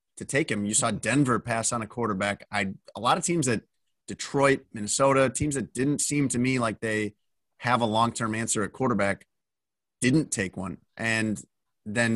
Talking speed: 185 wpm